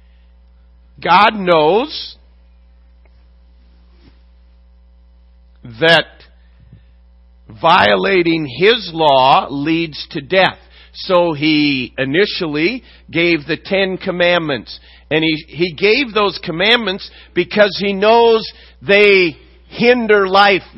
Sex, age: male, 50-69